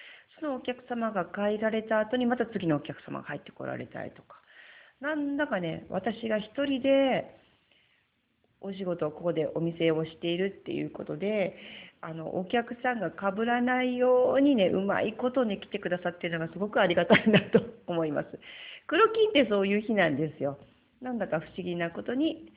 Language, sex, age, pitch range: English, female, 40-59, 165-260 Hz